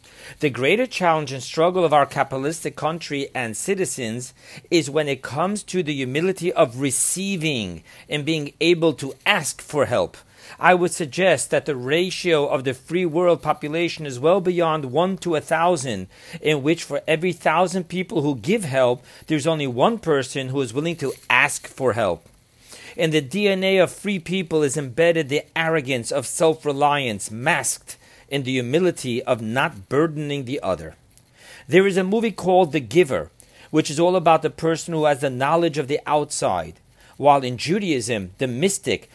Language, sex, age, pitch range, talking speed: English, male, 40-59, 135-170 Hz, 170 wpm